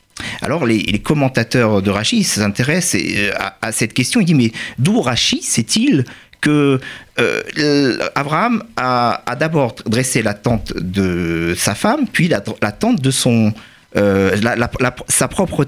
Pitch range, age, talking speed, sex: 120-160 Hz, 50-69, 155 wpm, male